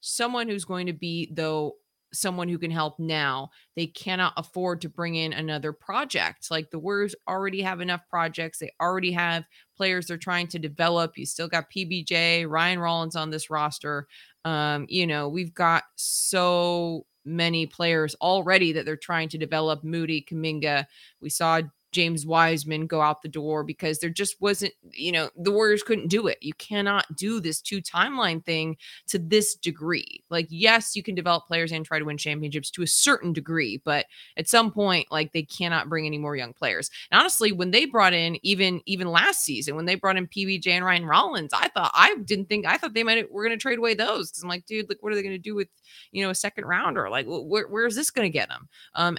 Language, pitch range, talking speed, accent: English, 160-195 Hz, 215 wpm, American